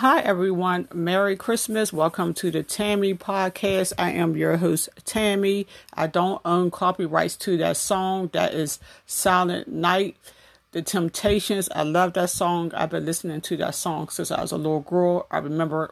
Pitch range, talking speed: 160-185 Hz, 170 wpm